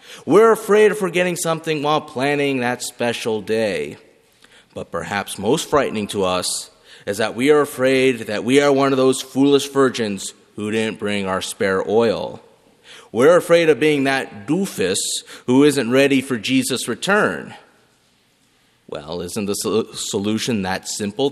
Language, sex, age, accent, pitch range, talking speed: English, male, 30-49, American, 130-205 Hz, 150 wpm